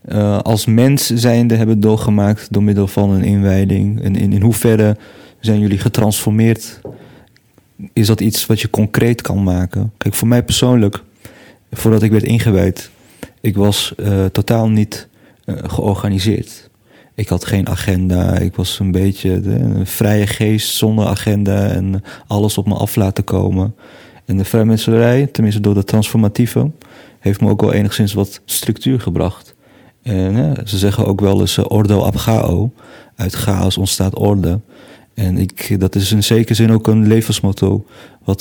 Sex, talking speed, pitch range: male, 160 wpm, 100-110 Hz